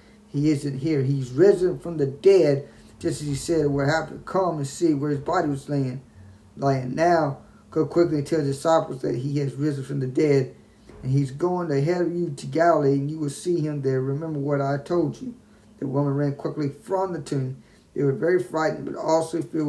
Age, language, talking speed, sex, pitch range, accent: 50-69, English, 225 wpm, male, 135-155 Hz, American